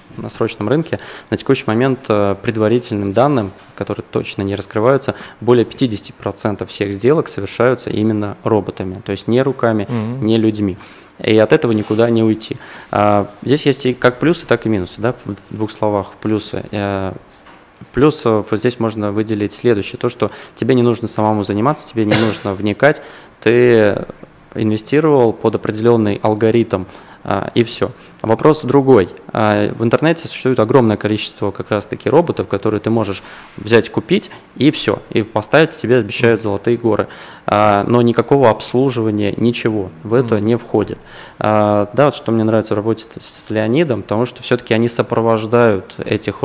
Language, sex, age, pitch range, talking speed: Russian, male, 20-39, 105-120 Hz, 145 wpm